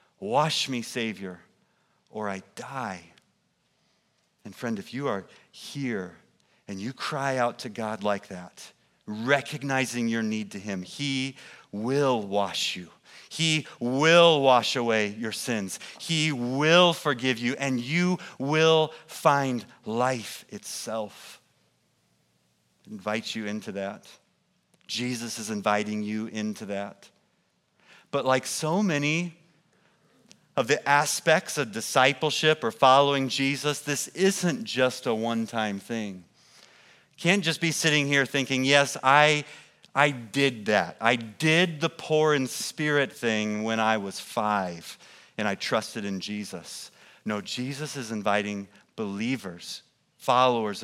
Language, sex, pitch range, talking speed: English, male, 110-150 Hz, 125 wpm